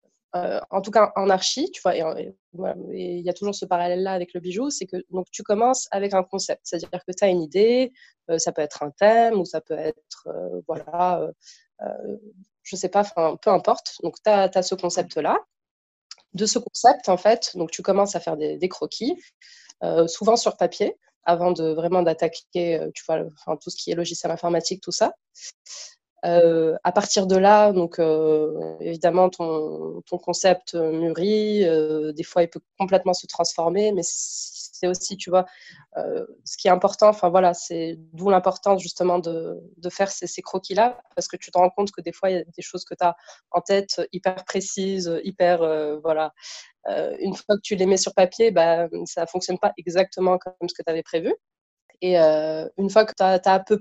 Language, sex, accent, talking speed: French, female, French, 205 wpm